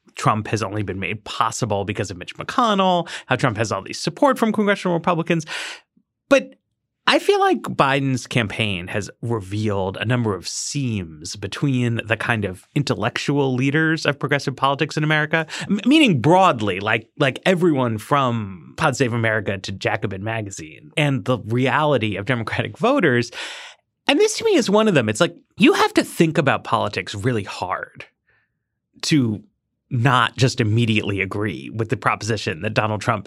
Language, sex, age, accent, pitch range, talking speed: English, male, 30-49, American, 110-170 Hz, 160 wpm